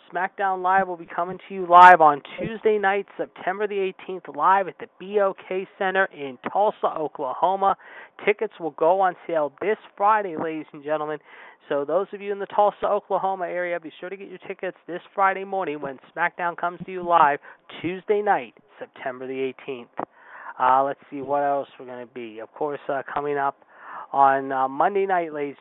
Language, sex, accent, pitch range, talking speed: English, male, American, 145-190 Hz, 185 wpm